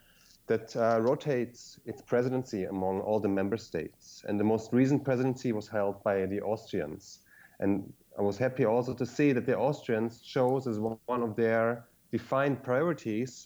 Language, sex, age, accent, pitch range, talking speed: English, male, 30-49, German, 95-120 Hz, 170 wpm